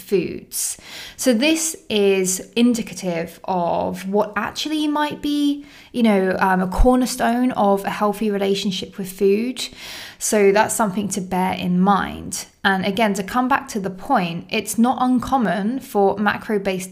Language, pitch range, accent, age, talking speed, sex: English, 185-235 Hz, British, 20-39, 145 wpm, female